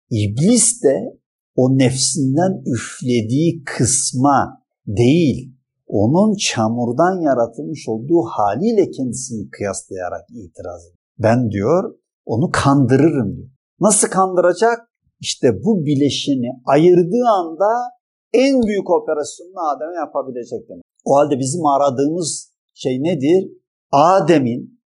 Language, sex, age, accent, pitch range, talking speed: Turkish, male, 50-69, native, 130-195 Hz, 100 wpm